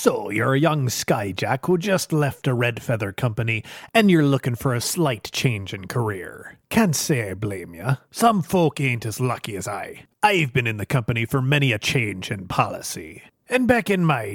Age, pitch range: 30-49, 120-150 Hz